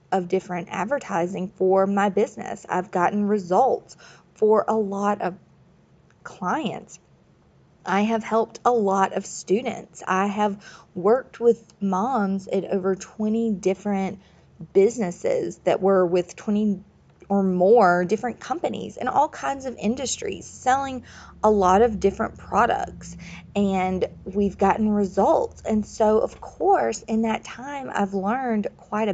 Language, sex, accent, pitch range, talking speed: English, female, American, 190-225 Hz, 130 wpm